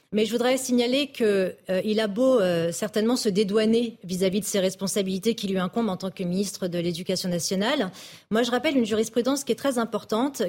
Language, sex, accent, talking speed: French, female, French, 200 wpm